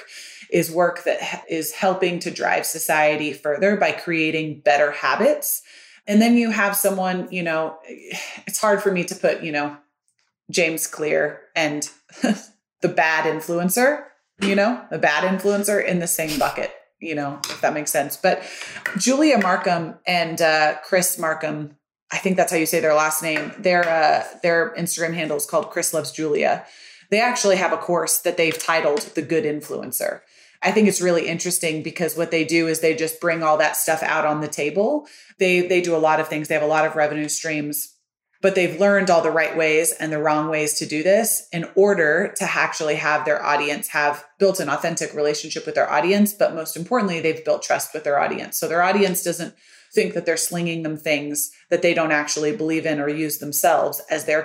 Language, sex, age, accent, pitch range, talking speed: English, female, 30-49, American, 155-185 Hz, 195 wpm